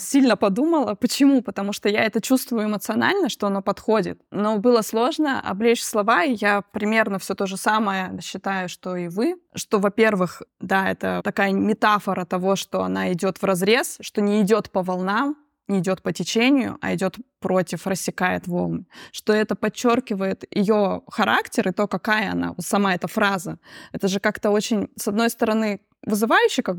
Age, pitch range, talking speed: 20-39, 190-225 Hz, 170 wpm